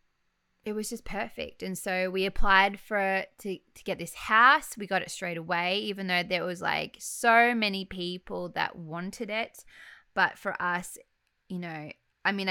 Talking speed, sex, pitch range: 175 wpm, female, 180-210 Hz